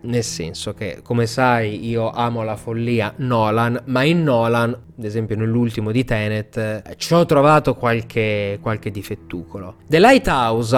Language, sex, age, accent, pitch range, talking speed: Italian, male, 20-39, native, 110-135 Hz, 150 wpm